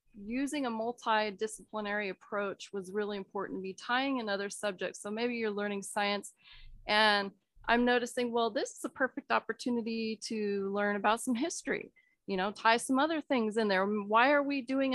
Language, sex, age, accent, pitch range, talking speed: English, female, 30-49, American, 200-245 Hz, 175 wpm